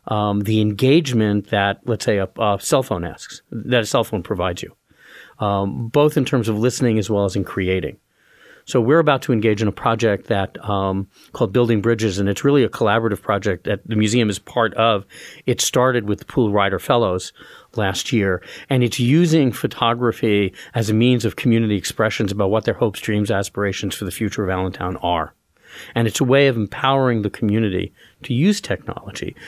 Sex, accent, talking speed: male, American, 195 wpm